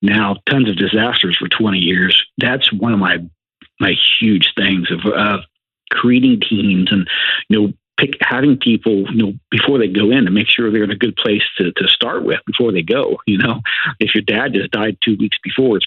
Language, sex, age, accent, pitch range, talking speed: English, male, 50-69, American, 95-120 Hz, 210 wpm